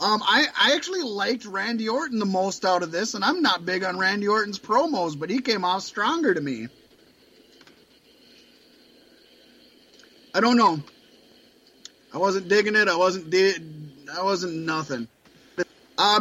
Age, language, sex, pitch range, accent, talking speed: 30-49, English, male, 195-265 Hz, American, 155 wpm